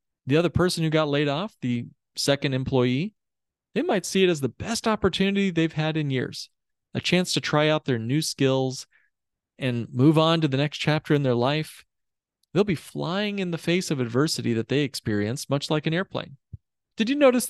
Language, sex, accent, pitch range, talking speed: English, male, American, 120-160 Hz, 200 wpm